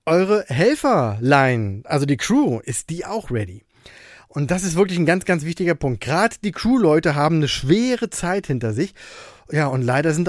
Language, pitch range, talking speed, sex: German, 140-200 Hz, 185 wpm, male